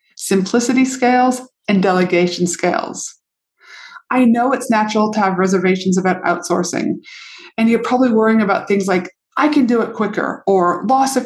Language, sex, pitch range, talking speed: English, female, 190-240 Hz, 155 wpm